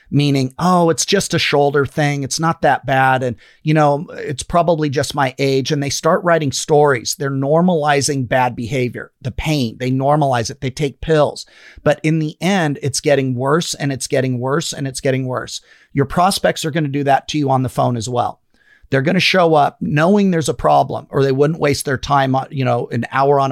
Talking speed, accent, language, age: 215 wpm, American, English, 40-59